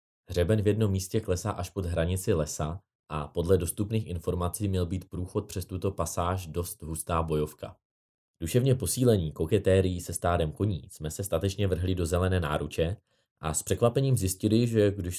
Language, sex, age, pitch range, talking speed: Czech, male, 20-39, 80-95 Hz, 160 wpm